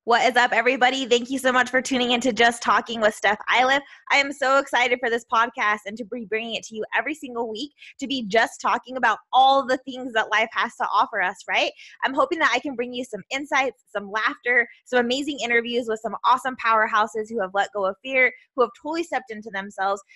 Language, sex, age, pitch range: English, female, 20-39, 220-270 Hz